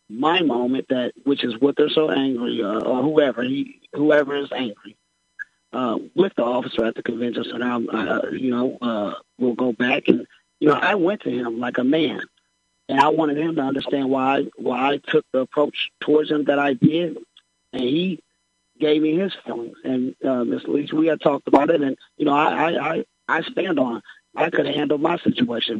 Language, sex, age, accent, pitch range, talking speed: English, male, 30-49, American, 125-155 Hz, 205 wpm